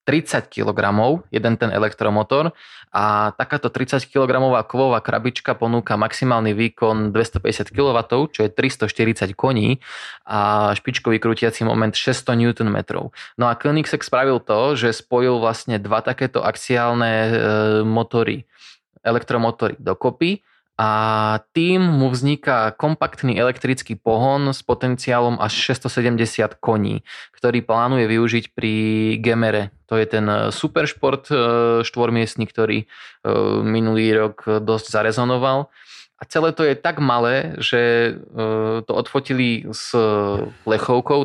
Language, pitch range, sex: Slovak, 110-130 Hz, male